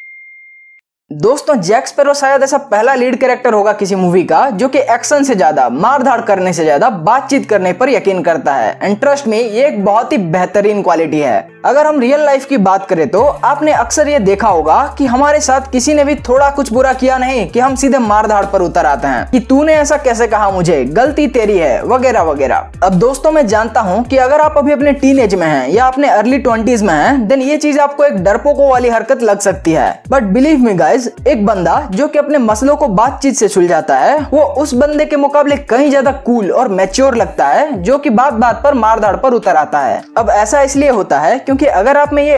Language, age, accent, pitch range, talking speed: Hindi, 20-39, native, 210-285 Hz, 220 wpm